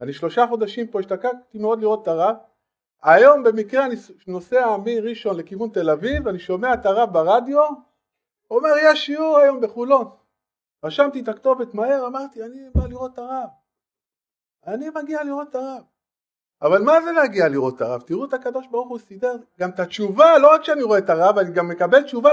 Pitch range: 205-285 Hz